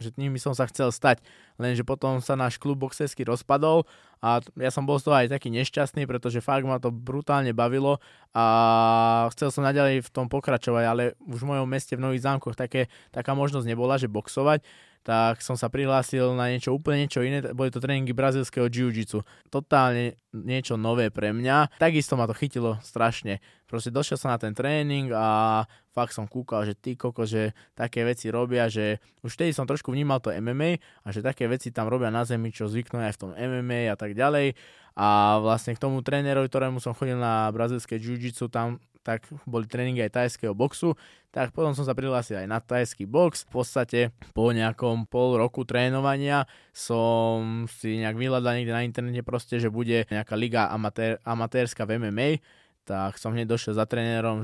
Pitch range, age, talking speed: 115-130 Hz, 20-39, 185 wpm